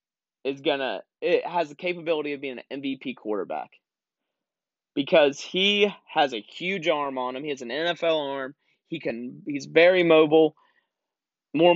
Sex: male